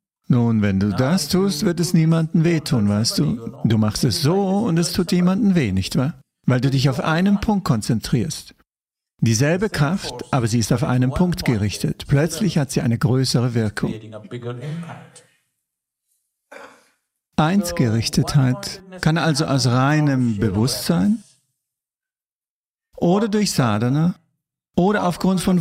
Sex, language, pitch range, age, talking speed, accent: male, English, 130-180 Hz, 50-69, 130 wpm, German